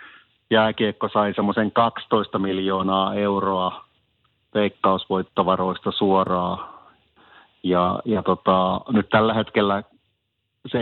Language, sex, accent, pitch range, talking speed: Finnish, male, native, 95-110 Hz, 85 wpm